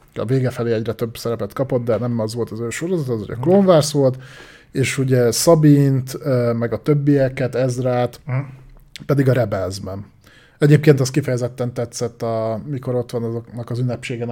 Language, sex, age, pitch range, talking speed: Hungarian, male, 20-39, 115-135 Hz, 170 wpm